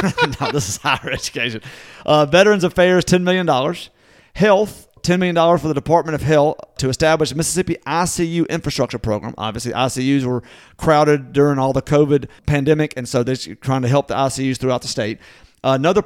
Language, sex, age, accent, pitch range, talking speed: English, male, 40-59, American, 130-175 Hz, 175 wpm